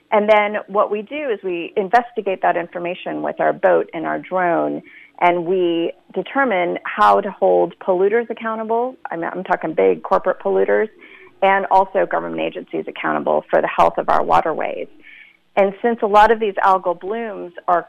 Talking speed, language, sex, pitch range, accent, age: 170 wpm, English, female, 160-205 Hz, American, 40-59